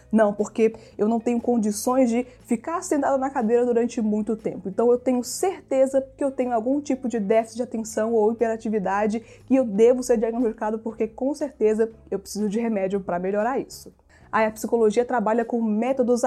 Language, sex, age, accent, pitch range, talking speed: Portuguese, female, 20-39, Brazilian, 215-255 Hz, 185 wpm